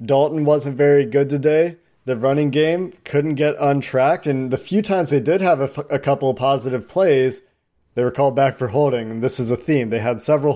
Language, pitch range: English, 125-145 Hz